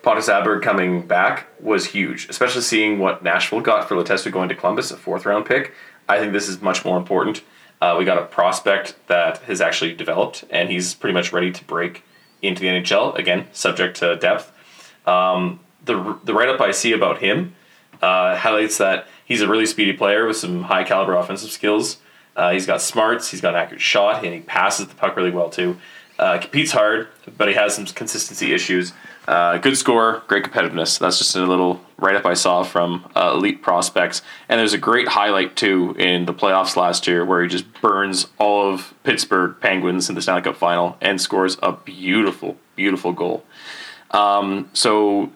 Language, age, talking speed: English, 20-39, 195 wpm